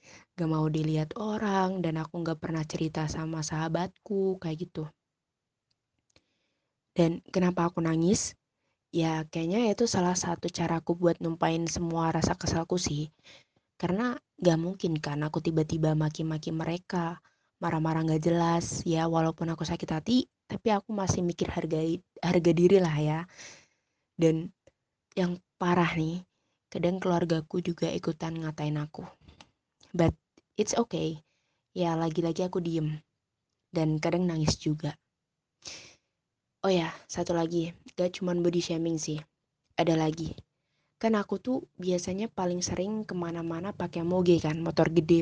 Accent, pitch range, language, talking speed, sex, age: native, 160-180 Hz, Indonesian, 130 wpm, female, 20-39